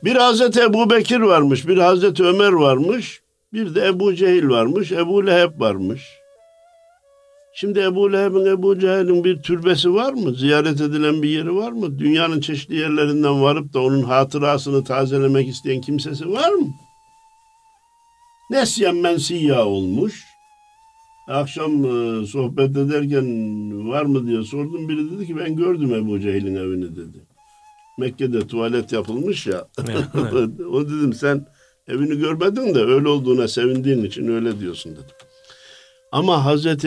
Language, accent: Turkish, native